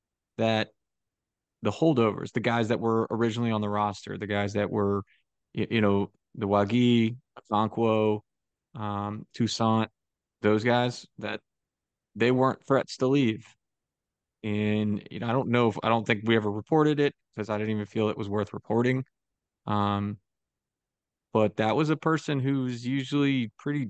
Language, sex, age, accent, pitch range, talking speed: English, male, 20-39, American, 105-120 Hz, 155 wpm